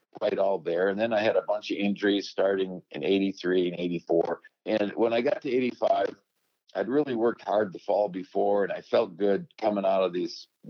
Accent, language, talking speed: American, English, 210 wpm